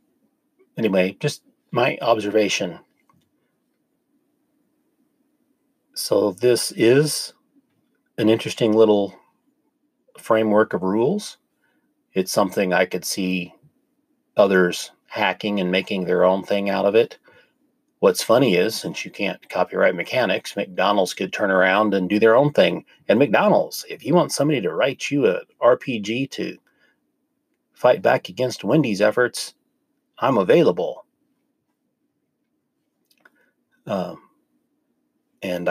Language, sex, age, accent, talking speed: English, male, 40-59, American, 110 wpm